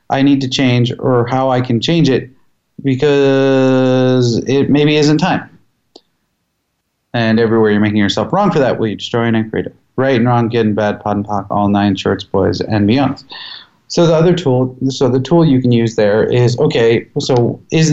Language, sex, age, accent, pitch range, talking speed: English, male, 30-49, American, 110-135 Hz, 190 wpm